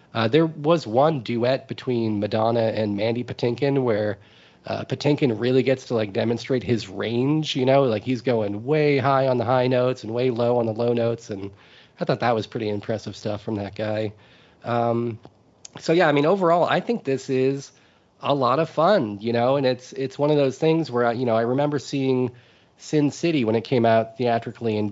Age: 30-49